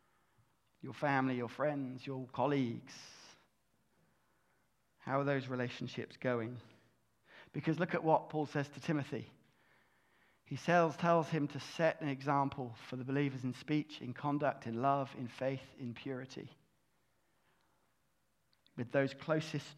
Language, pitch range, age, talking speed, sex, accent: English, 125-155 Hz, 30-49, 130 wpm, male, British